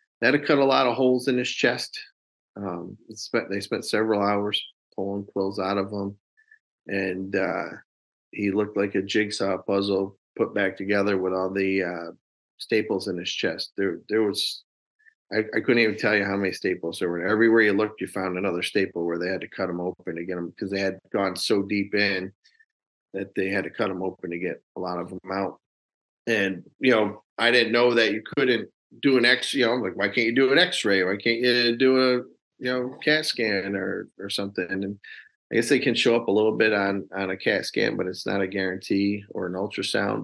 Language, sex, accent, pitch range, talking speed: English, male, American, 95-115 Hz, 220 wpm